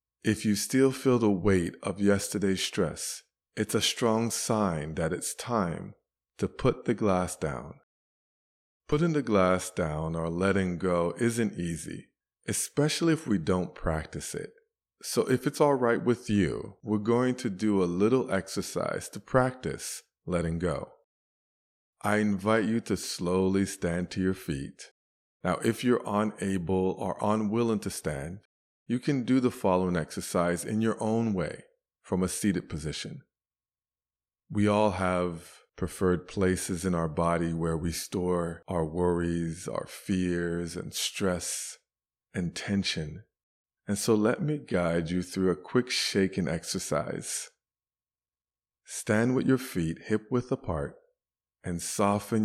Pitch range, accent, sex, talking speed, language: 85-110 Hz, American, male, 140 wpm, English